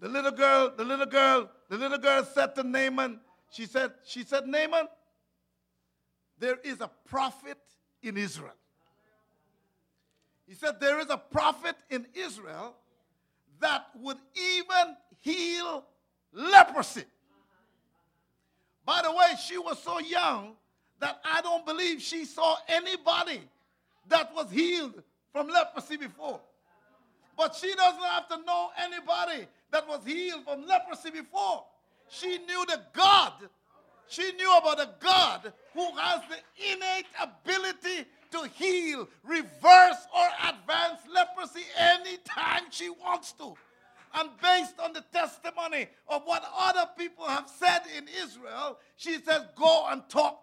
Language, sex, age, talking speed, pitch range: English, male, 50-69, 130 wpm, 275-350 Hz